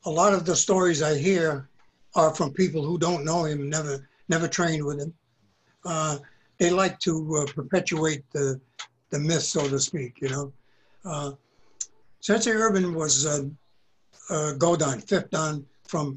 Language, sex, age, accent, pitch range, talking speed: English, male, 60-79, American, 140-175 Hz, 165 wpm